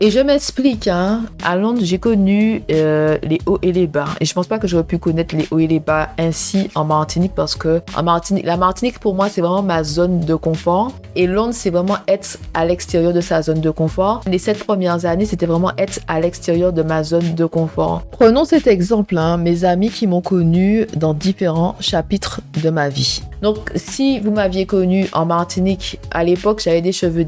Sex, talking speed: female, 215 wpm